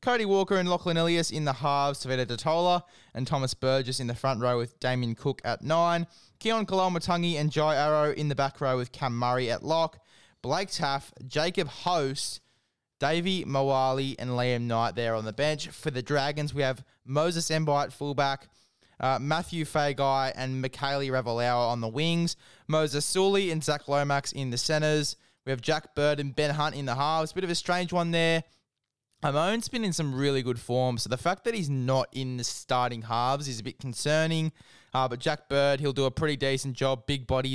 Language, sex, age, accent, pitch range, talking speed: English, male, 20-39, Australian, 130-160 Hz, 195 wpm